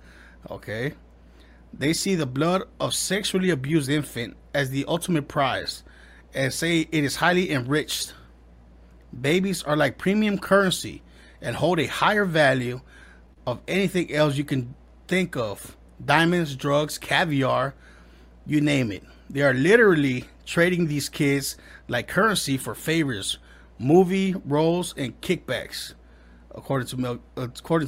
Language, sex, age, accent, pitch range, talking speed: English, male, 30-49, American, 120-165 Hz, 125 wpm